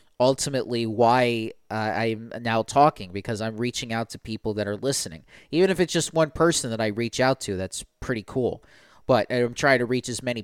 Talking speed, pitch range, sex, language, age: 205 wpm, 105-130 Hz, male, English, 30-49